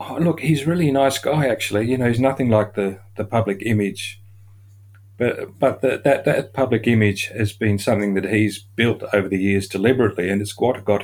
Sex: male